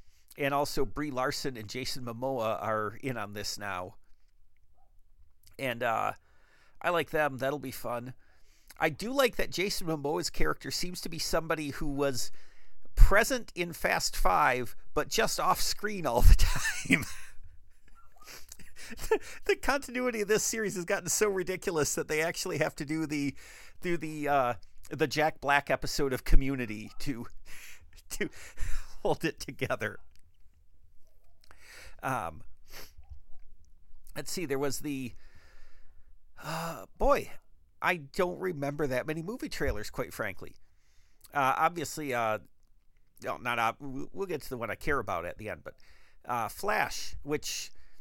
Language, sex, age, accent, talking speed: English, male, 50-69, American, 140 wpm